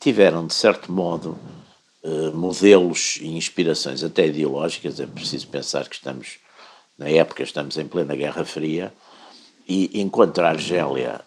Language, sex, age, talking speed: Portuguese, male, 60-79, 135 wpm